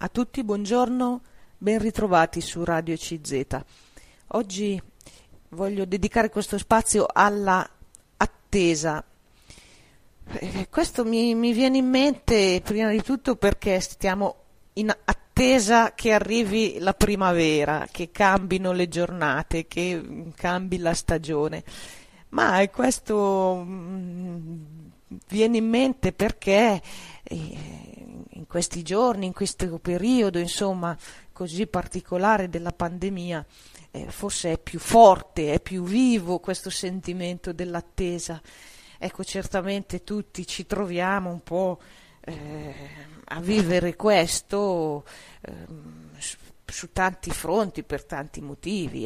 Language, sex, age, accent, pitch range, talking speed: Italian, female, 40-59, native, 170-205 Hz, 105 wpm